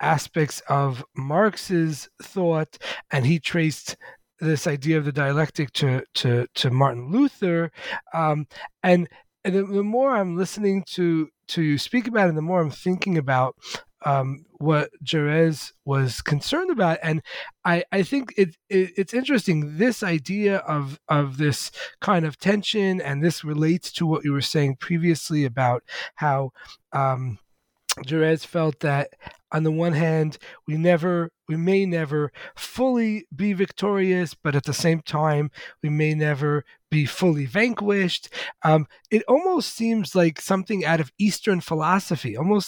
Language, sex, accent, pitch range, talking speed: English, male, American, 150-195 Hz, 150 wpm